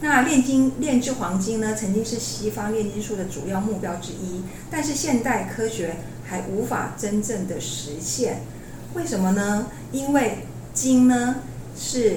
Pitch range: 190-245 Hz